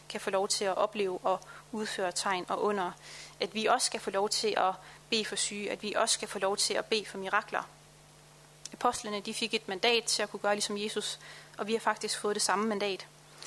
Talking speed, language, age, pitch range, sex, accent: 230 wpm, Danish, 30-49, 200-225 Hz, female, native